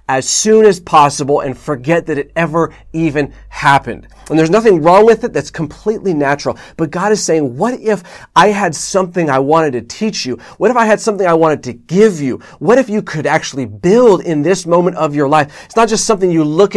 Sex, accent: male, American